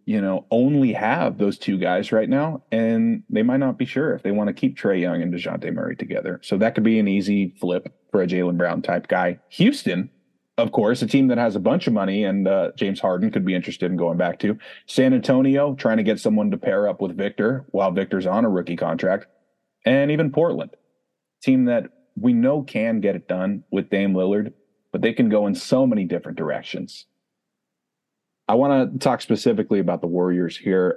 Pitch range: 95-135 Hz